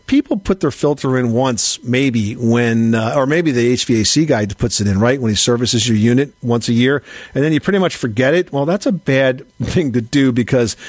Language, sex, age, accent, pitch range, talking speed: English, male, 50-69, American, 120-155 Hz, 225 wpm